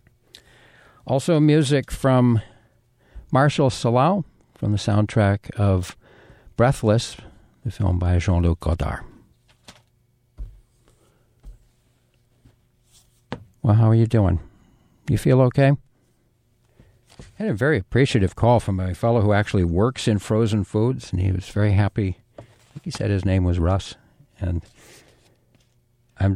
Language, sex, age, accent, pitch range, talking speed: English, male, 60-79, American, 105-125 Hz, 120 wpm